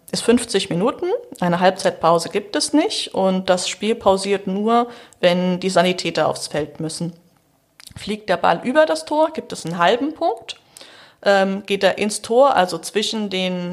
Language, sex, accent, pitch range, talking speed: German, female, German, 175-235 Hz, 170 wpm